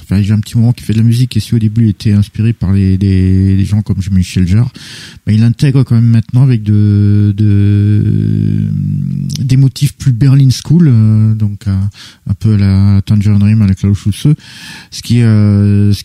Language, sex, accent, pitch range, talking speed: French, male, French, 100-120 Hz, 220 wpm